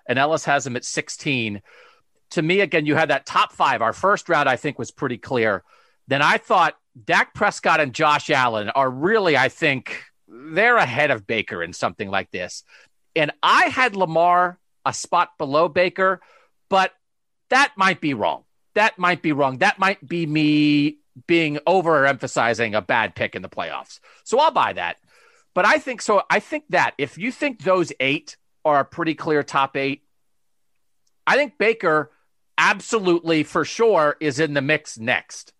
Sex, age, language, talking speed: male, 40-59, English, 175 wpm